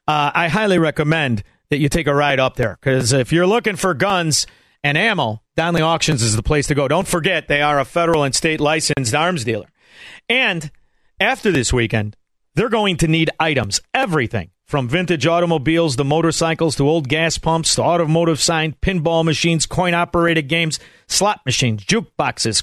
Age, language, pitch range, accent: 50-69, English, 135-175 Hz, American